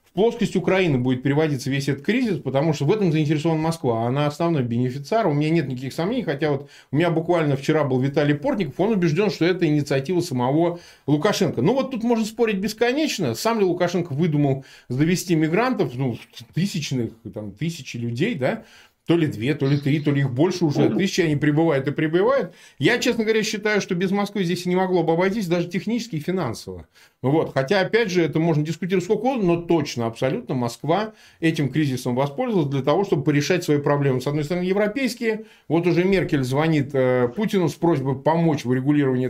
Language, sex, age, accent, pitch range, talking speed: Russian, male, 20-39, native, 140-190 Hz, 190 wpm